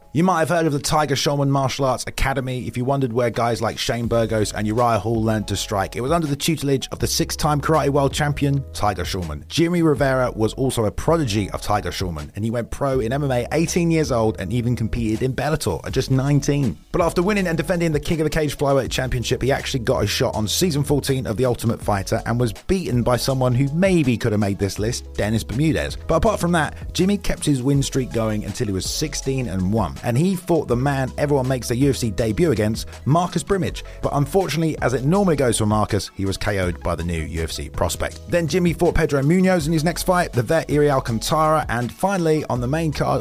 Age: 30-49